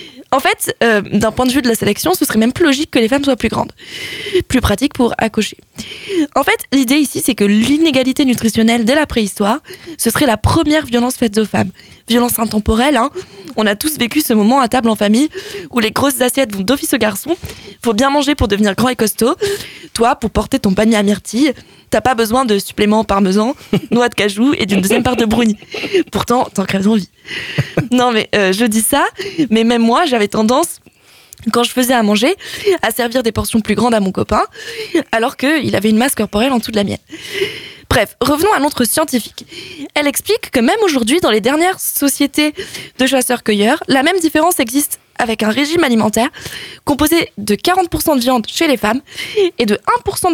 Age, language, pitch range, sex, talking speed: 20-39, French, 225-310 Hz, female, 205 wpm